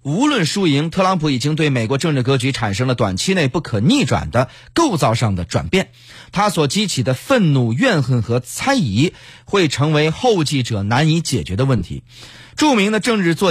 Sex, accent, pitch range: male, native, 120-180 Hz